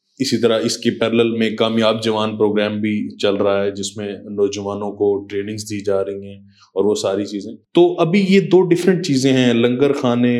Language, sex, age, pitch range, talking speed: Urdu, male, 20-39, 110-140 Hz, 200 wpm